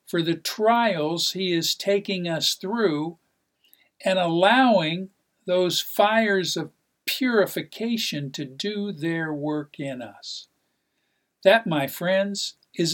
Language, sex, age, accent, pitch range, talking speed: English, male, 50-69, American, 145-195 Hz, 110 wpm